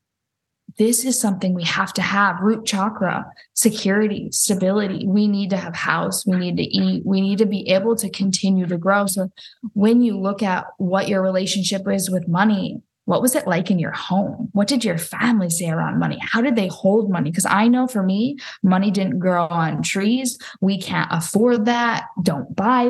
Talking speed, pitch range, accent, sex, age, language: 195 wpm, 185-220 Hz, American, female, 10-29, English